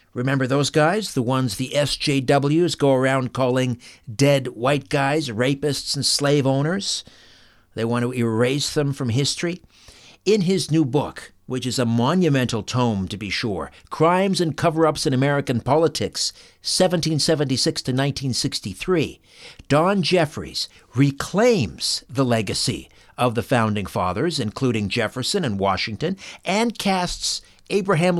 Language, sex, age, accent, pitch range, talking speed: English, male, 60-79, American, 120-155 Hz, 130 wpm